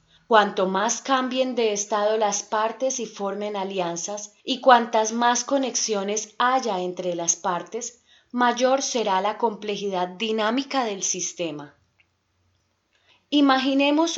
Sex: female